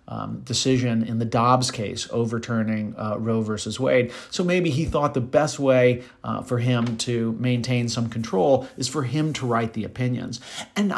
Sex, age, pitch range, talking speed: male, 40-59, 115-150 Hz, 180 wpm